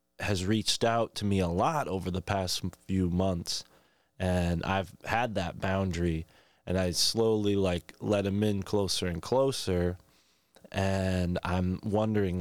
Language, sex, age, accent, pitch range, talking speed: English, male, 20-39, American, 90-110 Hz, 145 wpm